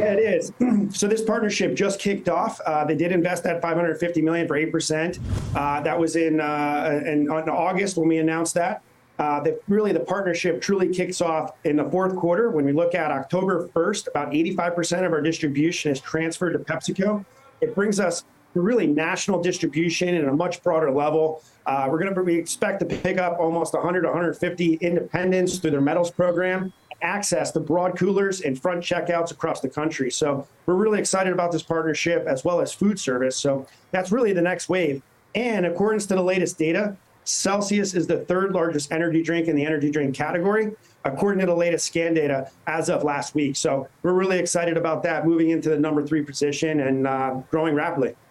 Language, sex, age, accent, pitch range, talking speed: English, male, 30-49, American, 155-180 Hz, 200 wpm